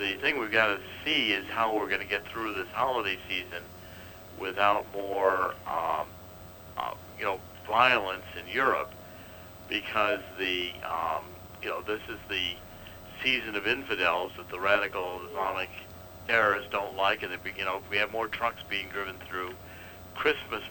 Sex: male